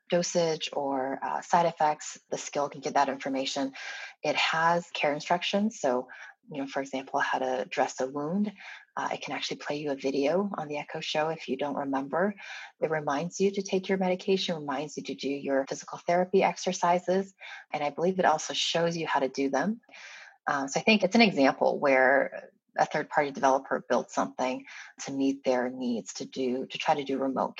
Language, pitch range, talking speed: English, 135-170 Hz, 200 wpm